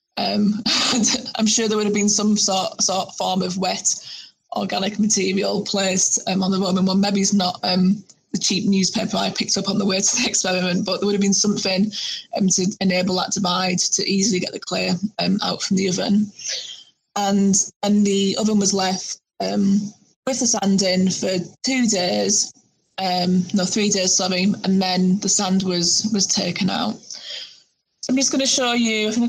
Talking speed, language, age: 195 wpm, English, 20-39